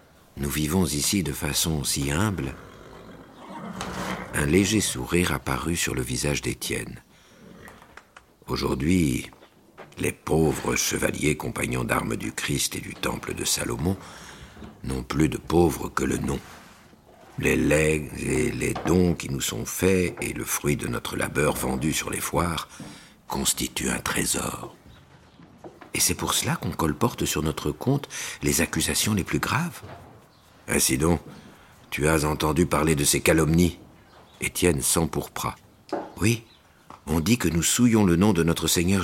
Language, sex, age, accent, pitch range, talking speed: French, male, 60-79, French, 70-90 Hz, 145 wpm